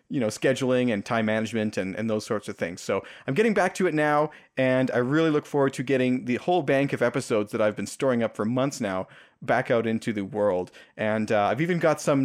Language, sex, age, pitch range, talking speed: English, male, 30-49, 110-145 Hz, 245 wpm